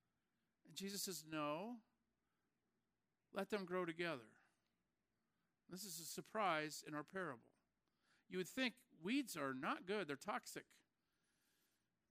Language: English